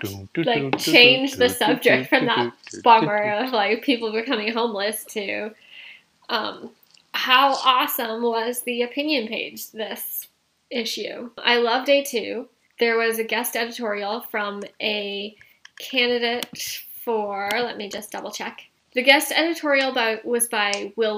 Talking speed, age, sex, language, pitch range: 130 wpm, 10-29, female, English, 210-270 Hz